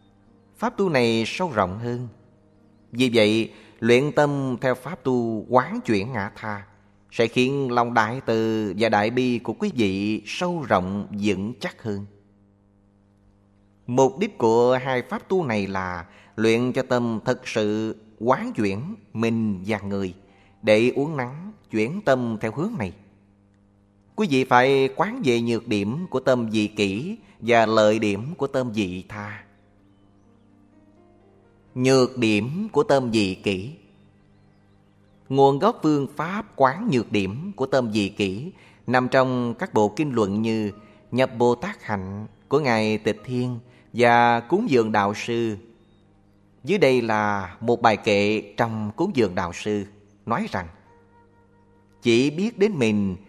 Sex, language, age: male, Vietnamese, 20-39